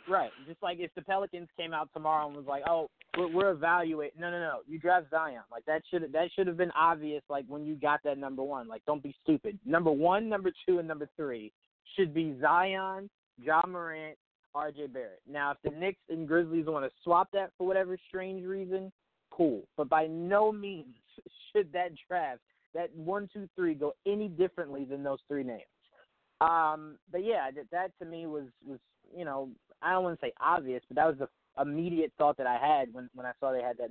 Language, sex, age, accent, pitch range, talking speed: English, male, 20-39, American, 140-175 Hz, 215 wpm